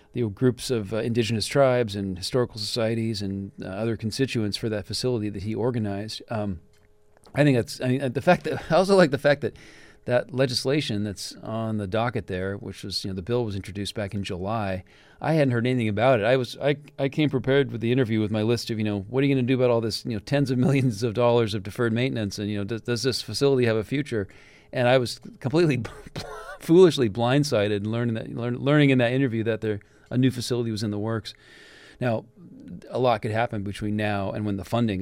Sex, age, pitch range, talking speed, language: male, 40-59, 100-125 Hz, 235 wpm, English